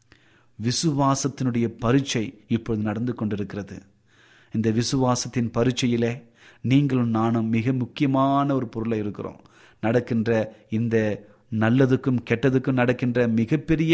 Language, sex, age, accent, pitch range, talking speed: Tamil, male, 30-49, native, 110-130 Hz, 85 wpm